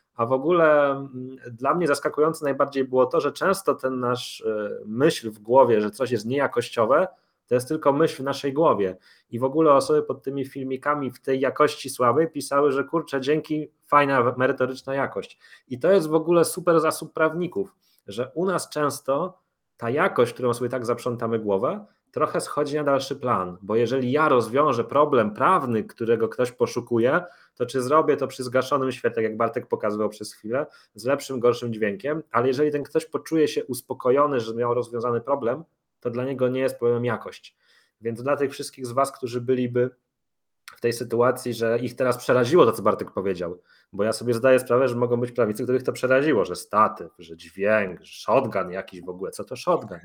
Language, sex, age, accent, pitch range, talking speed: Polish, male, 30-49, native, 120-145 Hz, 185 wpm